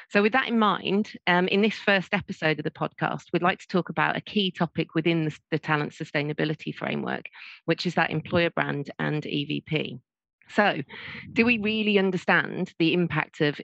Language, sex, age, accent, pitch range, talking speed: English, female, 40-59, British, 155-190 Hz, 185 wpm